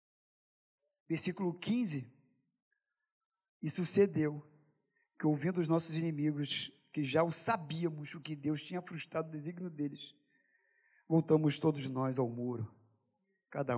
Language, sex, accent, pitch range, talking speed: Portuguese, male, Brazilian, 140-190 Hz, 115 wpm